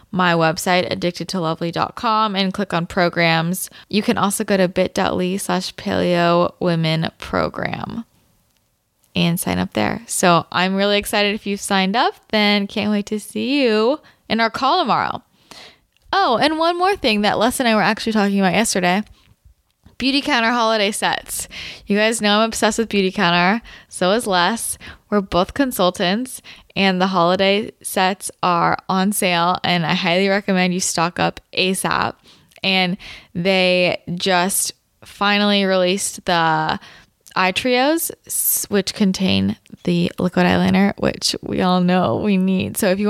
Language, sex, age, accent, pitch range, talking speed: English, female, 10-29, American, 180-215 Hz, 150 wpm